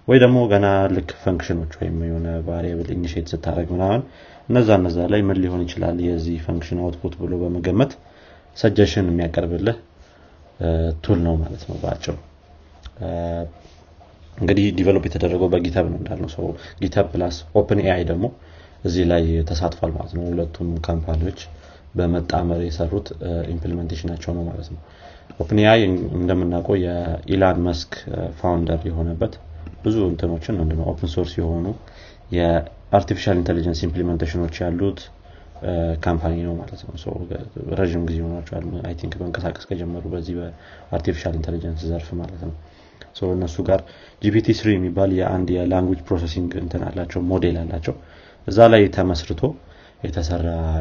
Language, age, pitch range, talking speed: Amharic, 30-49, 85-95 Hz, 85 wpm